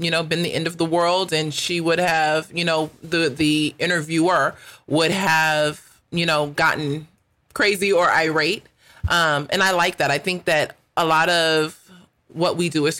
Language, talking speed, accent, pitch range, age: English, 185 wpm, American, 145-170 Hz, 30-49